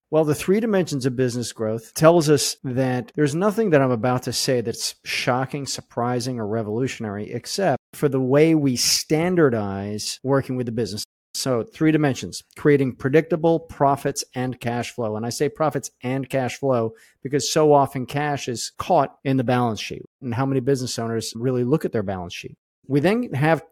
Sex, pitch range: male, 120-150 Hz